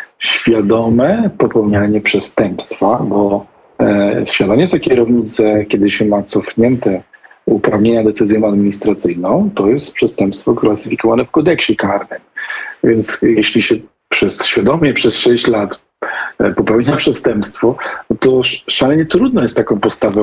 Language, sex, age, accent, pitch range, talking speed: Polish, male, 40-59, native, 110-125 Hz, 110 wpm